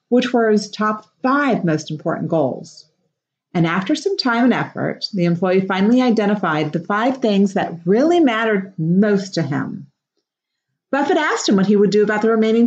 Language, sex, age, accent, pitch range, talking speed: English, female, 40-59, American, 170-245 Hz, 175 wpm